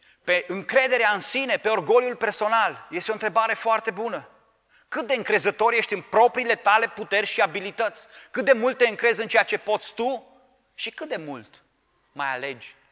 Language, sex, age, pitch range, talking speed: Romanian, male, 30-49, 140-230 Hz, 175 wpm